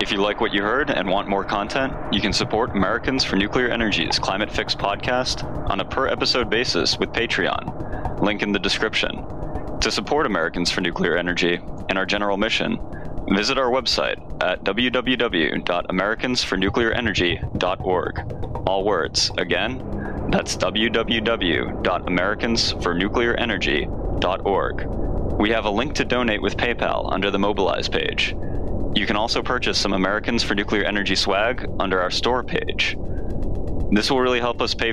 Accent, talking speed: American, 145 wpm